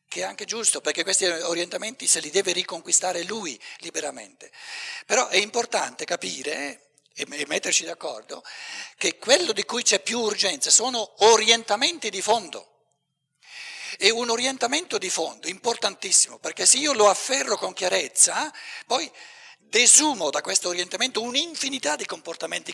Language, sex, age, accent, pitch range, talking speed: Italian, male, 60-79, native, 180-295 Hz, 135 wpm